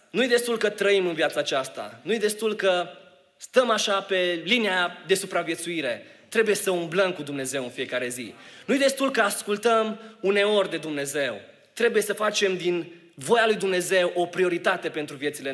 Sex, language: male, Romanian